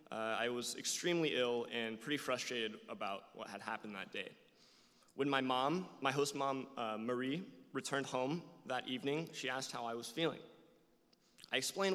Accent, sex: American, male